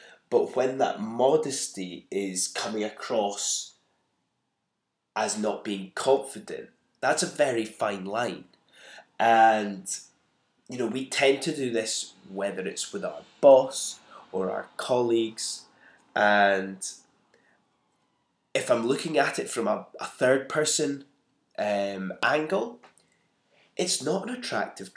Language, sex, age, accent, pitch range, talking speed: English, male, 20-39, British, 95-120 Hz, 120 wpm